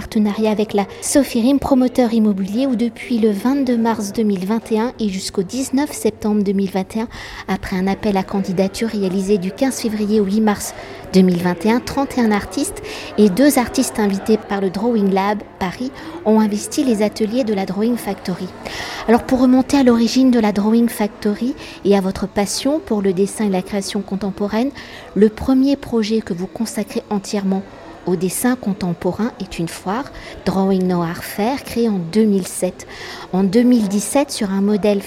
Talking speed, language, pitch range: 160 wpm, French, 200-245 Hz